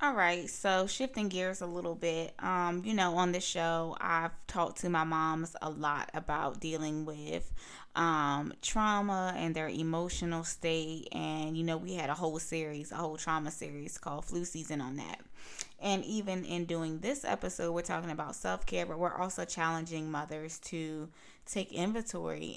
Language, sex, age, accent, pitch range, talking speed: English, female, 20-39, American, 160-185 Hz, 170 wpm